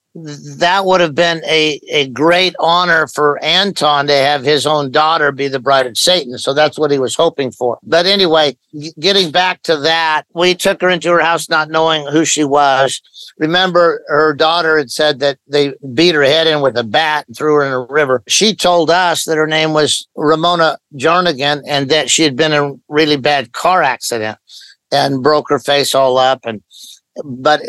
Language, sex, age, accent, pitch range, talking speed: English, male, 50-69, American, 135-165 Hz, 200 wpm